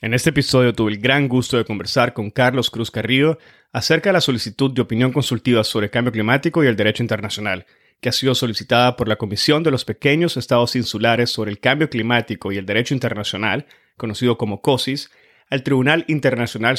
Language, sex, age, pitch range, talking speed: Spanish, male, 30-49, 115-135 Hz, 195 wpm